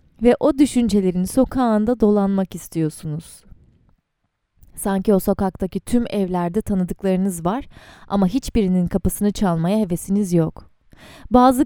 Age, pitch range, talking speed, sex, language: 30-49, 185-255 Hz, 105 wpm, female, Turkish